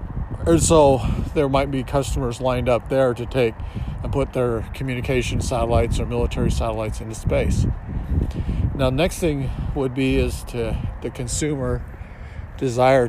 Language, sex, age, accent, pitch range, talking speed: English, male, 50-69, American, 95-130 Hz, 140 wpm